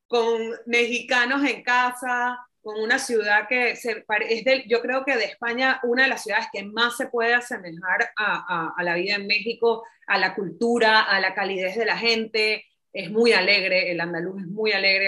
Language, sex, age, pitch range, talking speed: Spanish, female, 30-49, 205-245 Hz, 195 wpm